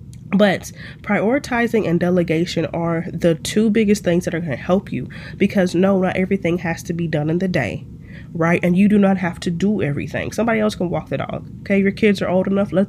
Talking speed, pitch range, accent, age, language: 225 wpm, 150-190 Hz, American, 20-39, English